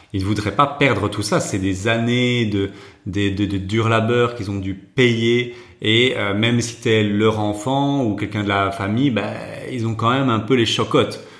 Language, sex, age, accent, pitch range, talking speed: French, male, 30-49, French, 100-120 Hz, 215 wpm